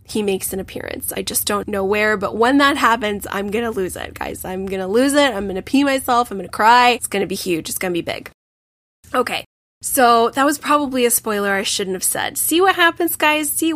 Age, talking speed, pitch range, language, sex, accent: 10-29, 230 wpm, 200-245 Hz, English, female, American